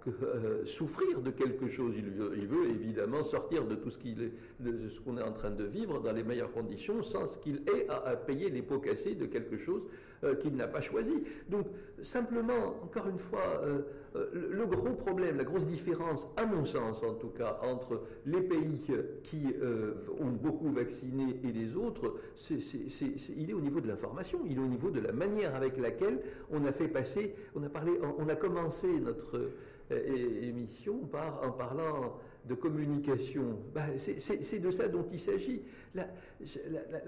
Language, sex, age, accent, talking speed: French, male, 60-79, French, 200 wpm